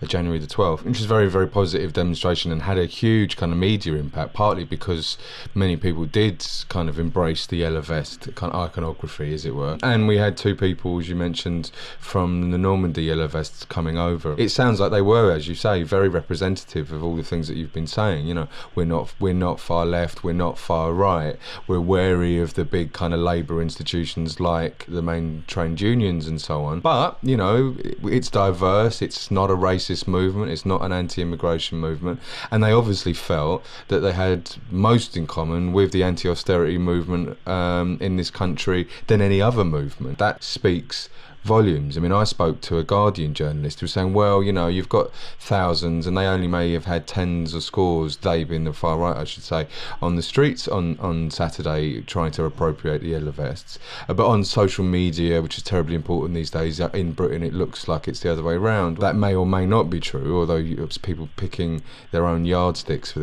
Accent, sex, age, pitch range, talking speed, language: British, male, 20-39, 80-95 Hz, 205 wpm, English